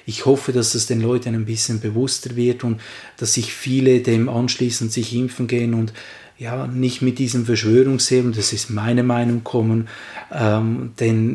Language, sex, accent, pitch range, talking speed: German, male, Austrian, 110-120 Hz, 170 wpm